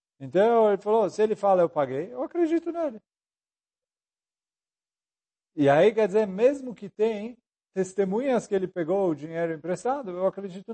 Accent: Brazilian